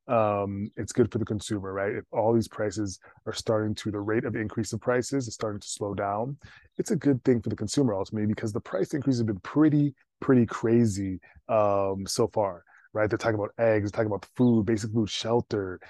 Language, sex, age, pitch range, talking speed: English, male, 20-39, 100-120 Hz, 220 wpm